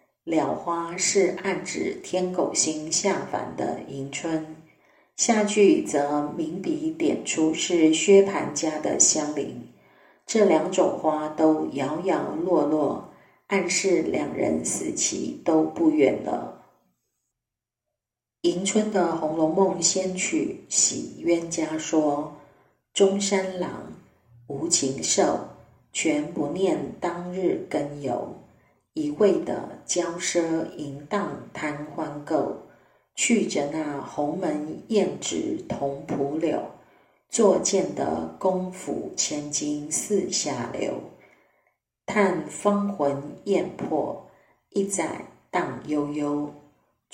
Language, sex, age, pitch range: Chinese, female, 40-59, 150-190 Hz